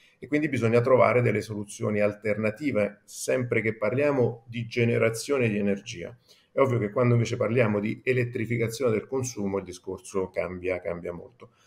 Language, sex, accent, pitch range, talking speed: Italian, male, native, 105-125 Hz, 150 wpm